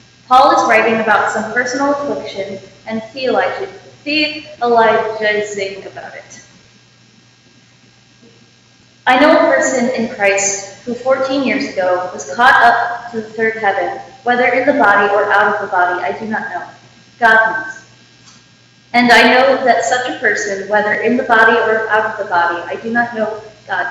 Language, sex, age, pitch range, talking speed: English, female, 20-39, 210-255 Hz, 170 wpm